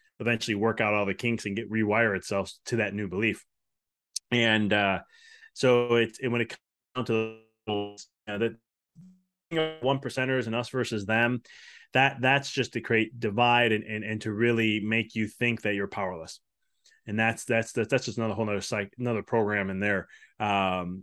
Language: English